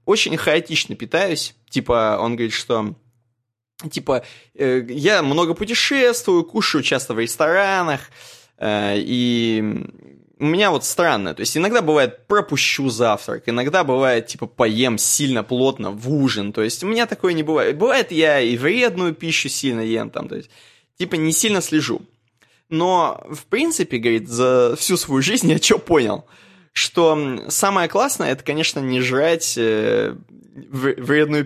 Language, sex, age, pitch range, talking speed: Russian, male, 20-39, 120-160 Hz, 145 wpm